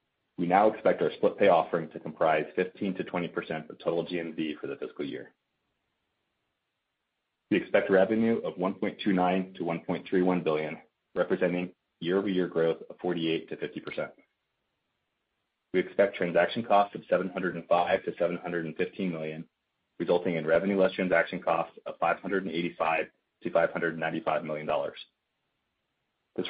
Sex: male